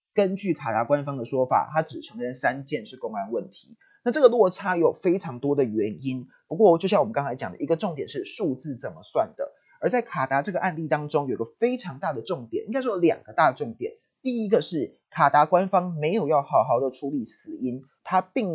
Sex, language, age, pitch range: male, Chinese, 30-49, 140-215 Hz